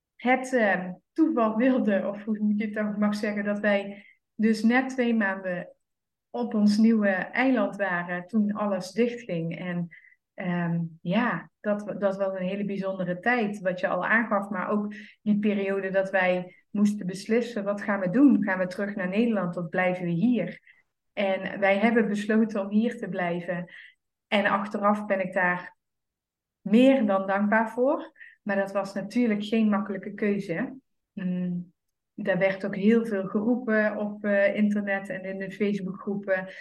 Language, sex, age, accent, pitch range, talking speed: English, female, 20-39, Dutch, 190-220 Hz, 155 wpm